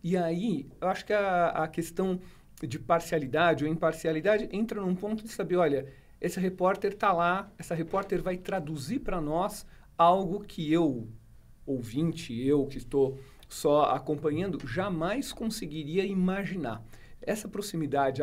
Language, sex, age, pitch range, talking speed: English, male, 50-69, 150-185 Hz, 140 wpm